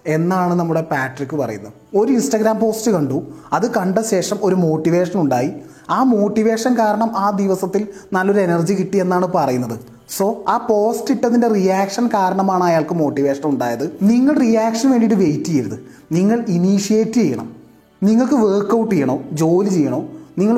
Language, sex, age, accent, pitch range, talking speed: Malayalam, male, 30-49, native, 165-220 Hz, 135 wpm